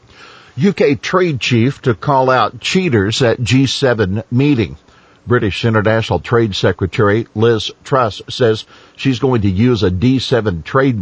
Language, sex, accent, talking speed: English, male, American, 130 wpm